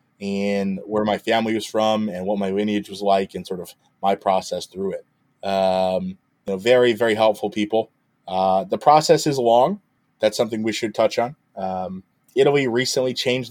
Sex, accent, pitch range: male, American, 100-135 Hz